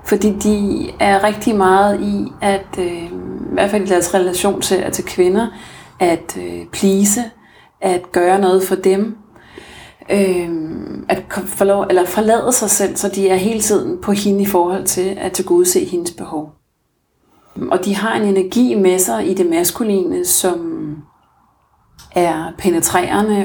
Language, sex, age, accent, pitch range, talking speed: Danish, female, 30-49, native, 180-210 Hz, 155 wpm